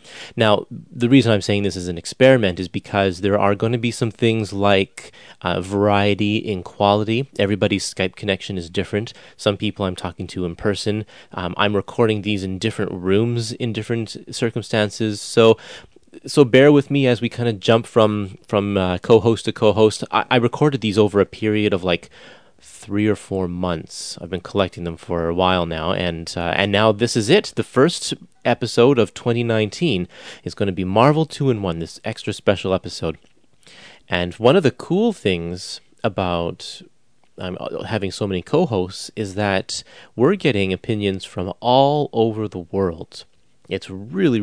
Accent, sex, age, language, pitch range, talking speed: American, male, 30-49, English, 95-115 Hz, 175 wpm